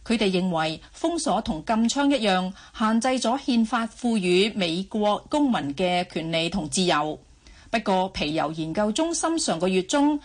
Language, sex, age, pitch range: Chinese, female, 40-59, 185-250 Hz